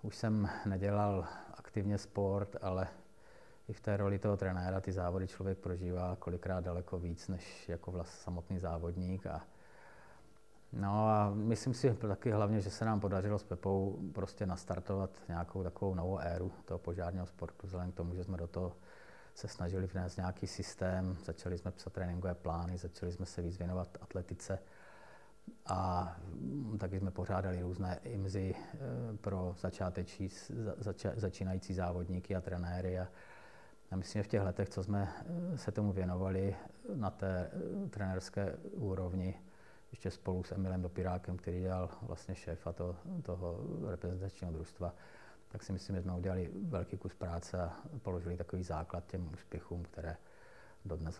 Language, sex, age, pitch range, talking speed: Czech, male, 30-49, 90-100 Hz, 150 wpm